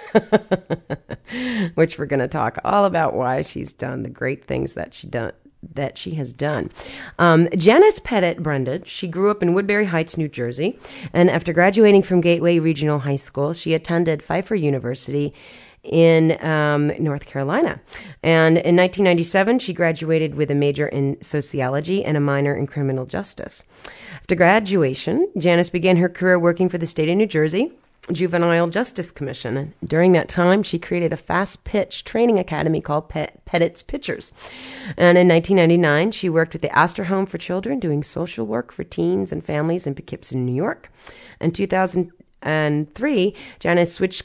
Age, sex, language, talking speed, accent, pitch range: 40-59, female, English, 165 wpm, American, 150-185 Hz